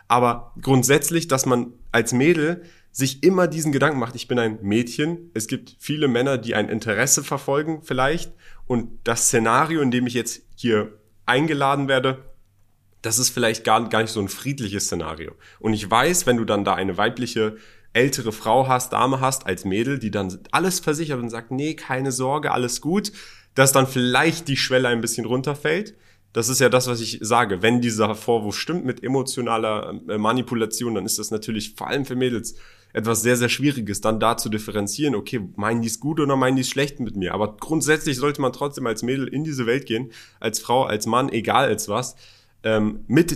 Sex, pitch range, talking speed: male, 110-140 Hz, 195 wpm